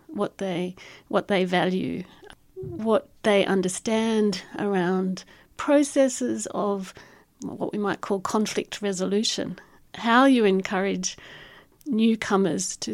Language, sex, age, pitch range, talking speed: English, female, 50-69, 185-240 Hz, 100 wpm